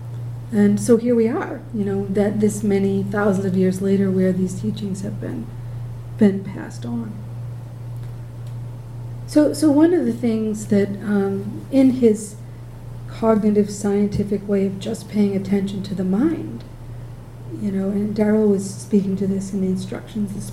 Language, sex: English, female